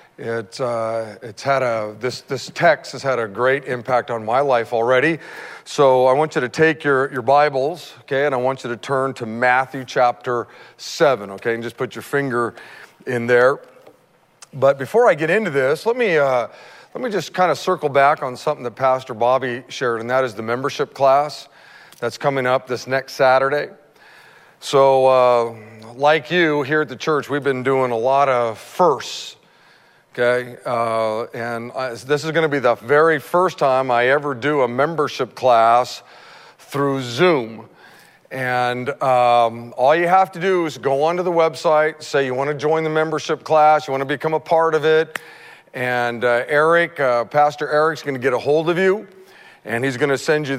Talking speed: 190 wpm